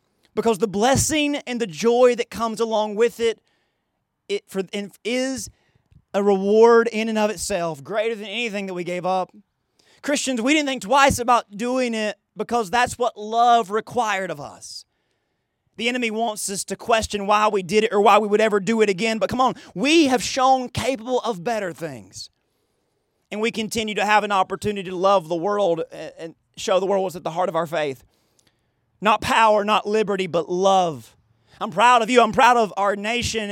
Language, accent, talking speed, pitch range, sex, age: English, American, 190 wpm, 190-230 Hz, male, 30-49